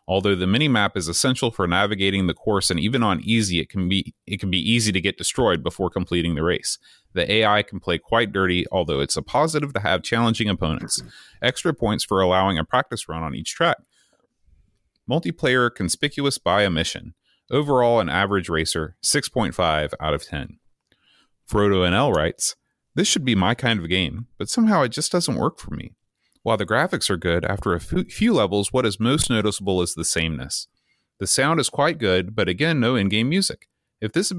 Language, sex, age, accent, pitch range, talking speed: English, male, 30-49, American, 85-120 Hz, 190 wpm